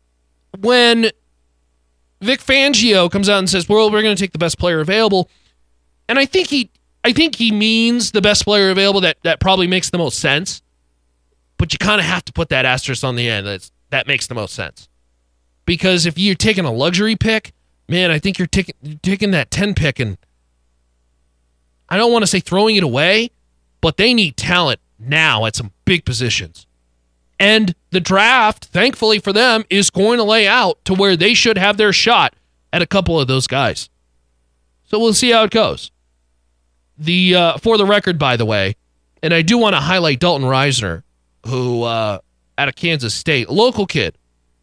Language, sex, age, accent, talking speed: English, male, 30-49, American, 190 wpm